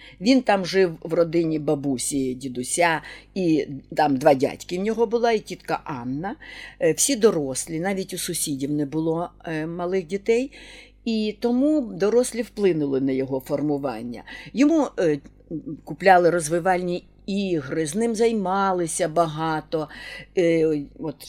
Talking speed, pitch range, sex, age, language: 120 wpm, 160-200 Hz, female, 50-69, Ukrainian